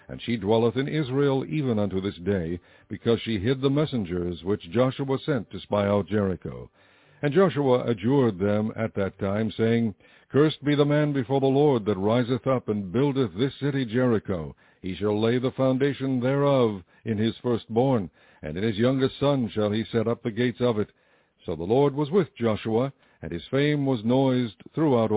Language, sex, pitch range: English, male, 105-135 Hz